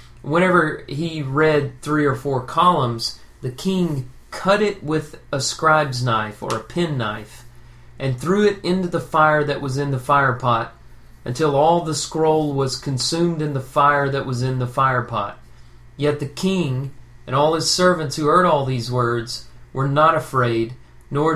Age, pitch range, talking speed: 40-59, 120-155 Hz, 165 wpm